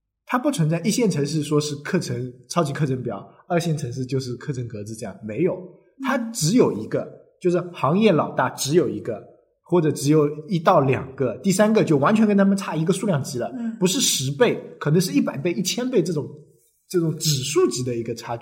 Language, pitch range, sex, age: Chinese, 120-170 Hz, male, 20-39